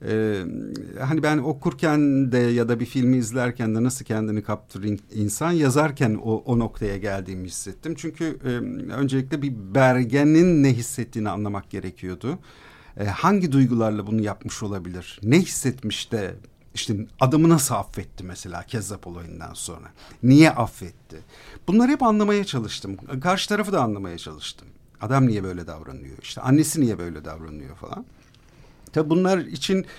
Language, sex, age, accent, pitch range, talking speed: Turkish, male, 50-69, native, 105-155 Hz, 140 wpm